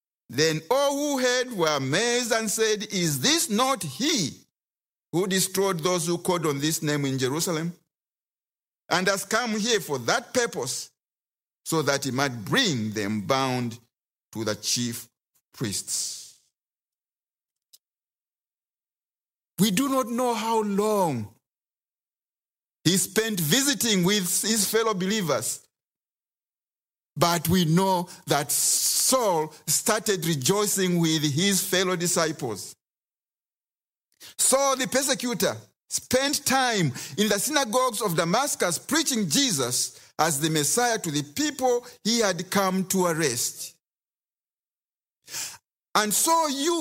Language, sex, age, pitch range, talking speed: English, male, 50-69, 160-245 Hz, 115 wpm